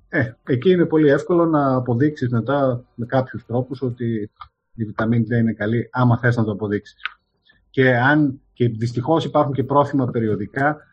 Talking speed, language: 165 wpm, Greek